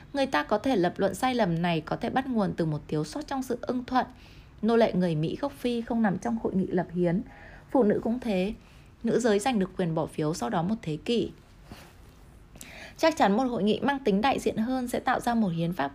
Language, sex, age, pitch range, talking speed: Vietnamese, female, 20-39, 180-235 Hz, 250 wpm